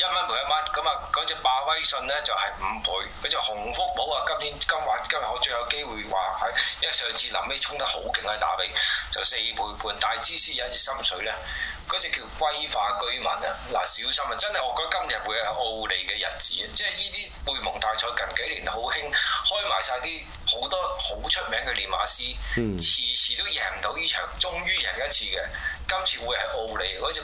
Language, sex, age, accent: Chinese, male, 20-39, native